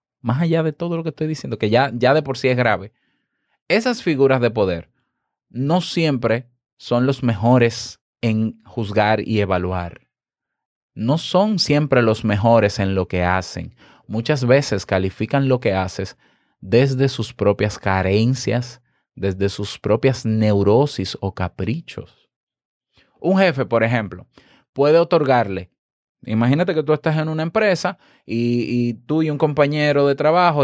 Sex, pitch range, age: male, 115-155 Hz, 30-49